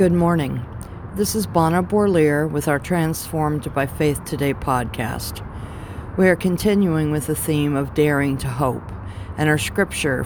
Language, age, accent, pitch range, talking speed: English, 50-69, American, 110-160 Hz, 150 wpm